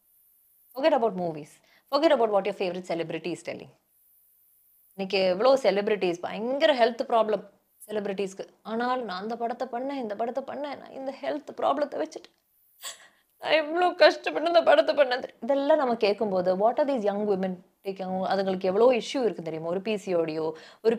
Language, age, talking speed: Tamil, 20-39, 155 wpm